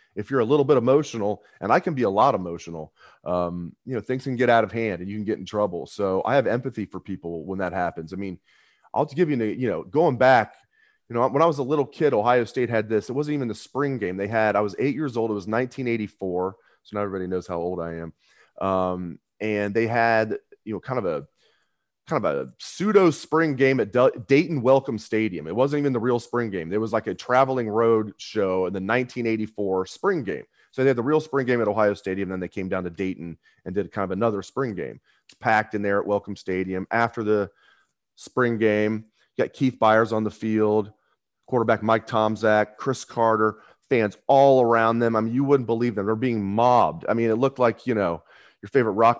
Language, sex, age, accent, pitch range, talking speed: English, male, 30-49, American, 100-125 Hz, 230 wpm